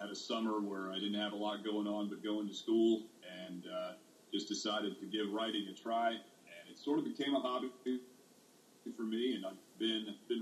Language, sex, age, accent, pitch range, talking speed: English, male, 40-59, American, 105-120 Hz, 215 wpm